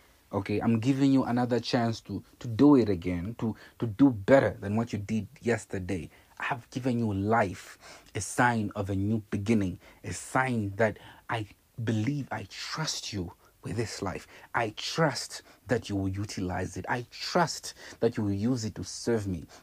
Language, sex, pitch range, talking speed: English, male, 100-125 Hz, 180 wpm